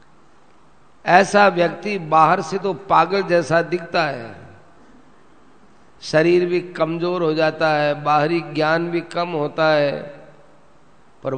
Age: 50-69